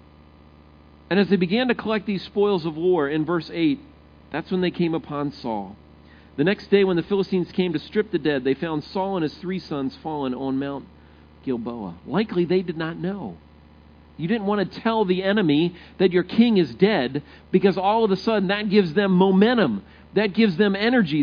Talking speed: 200 wpm